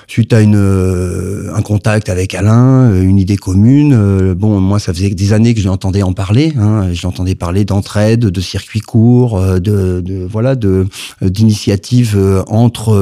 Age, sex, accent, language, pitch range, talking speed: 40-59, male, French, French, 100-115 Hz, 160 wpm